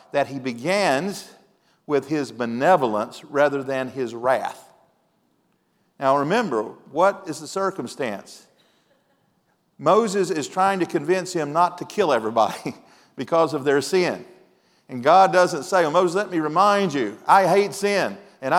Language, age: English, 50-69